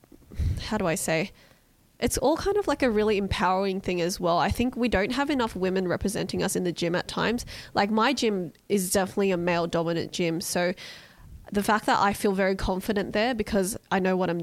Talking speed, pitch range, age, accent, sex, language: 215 wpm, 180-210 Hz, 20-39, Australian, female, English